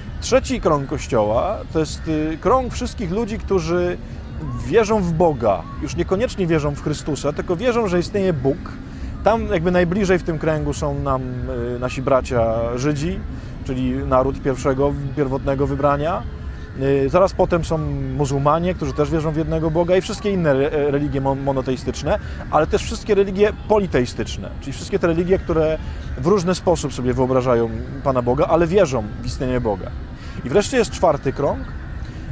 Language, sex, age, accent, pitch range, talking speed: Polish, male, 20-39, native, 130-185 Hz, 150 wpm